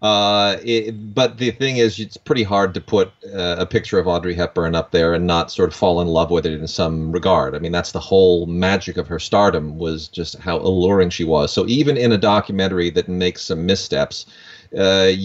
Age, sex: 30-49, male